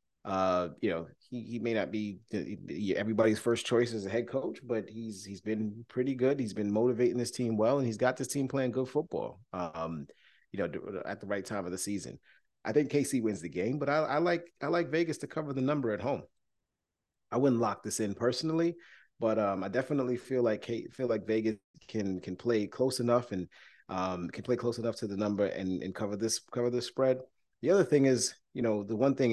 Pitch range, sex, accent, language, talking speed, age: 105-135 Hz, male, American, English, 225 wpm, 30-49